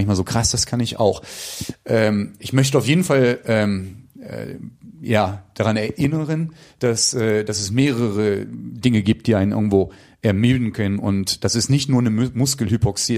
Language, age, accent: German, 30-49, German